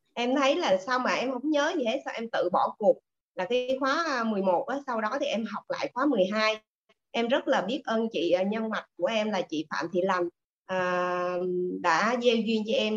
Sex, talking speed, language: female, 215 wpm, Vietnamese